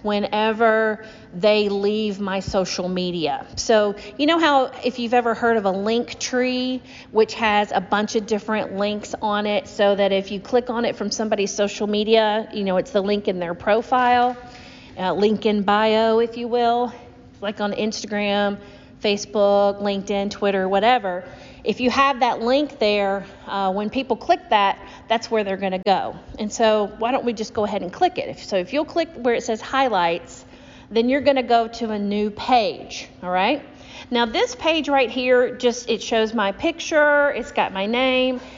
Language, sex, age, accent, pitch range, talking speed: English, female, 40-59, American, 200-245 Hz, 185 wpm